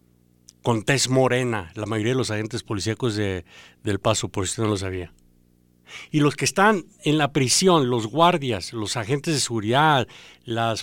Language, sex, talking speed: English, male, 175 wpm